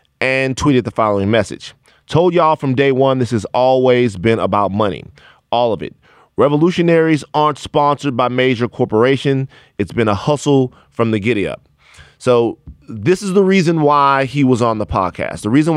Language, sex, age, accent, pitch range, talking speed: English, male, 30-49, American, 110-140 Hz, 175 wpm